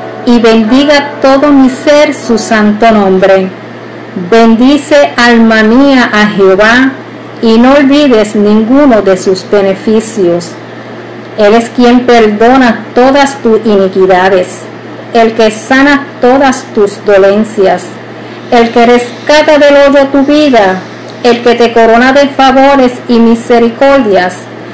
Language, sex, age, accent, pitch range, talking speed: Spanish, female, 40-59, American, 210-270 Hz, 120 wpm